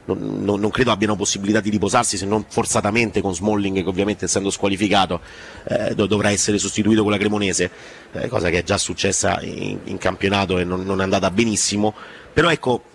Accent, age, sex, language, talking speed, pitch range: native, 30-49, male, Italian, 185 wpm, 100-120 Hz